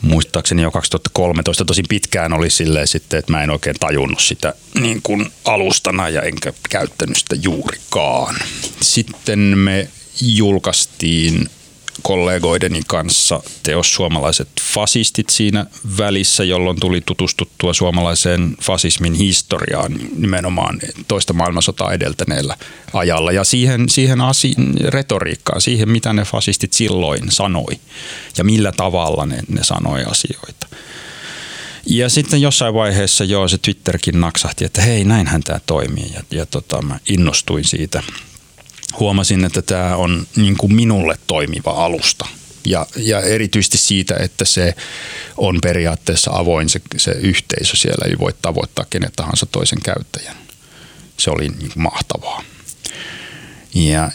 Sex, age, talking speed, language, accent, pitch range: male, 30-49, 125 wpm, Finnish, native, 85-110 Hz